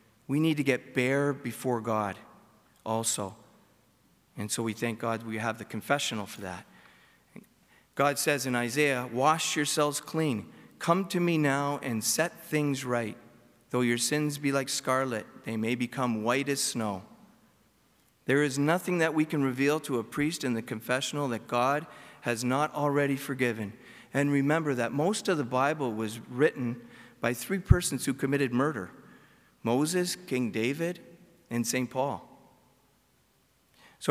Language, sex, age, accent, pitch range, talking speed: English, male, 40-59, American, 120-150 Hz, 155 wpm